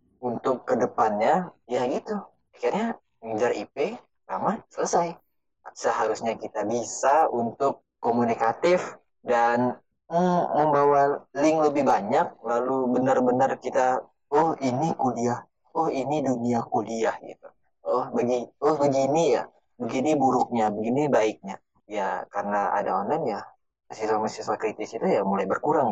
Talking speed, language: 120 wpm, Indonesian